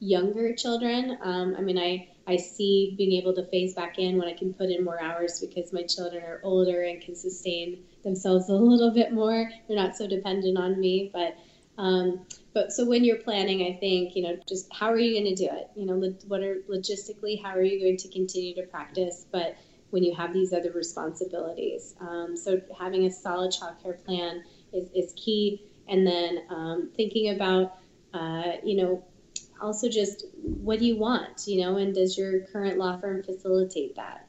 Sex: female